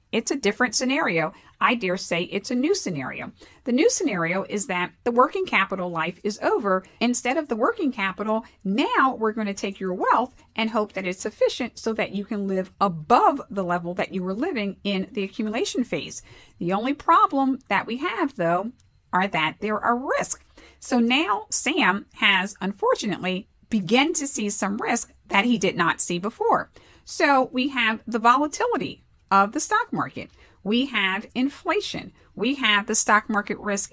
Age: 50-69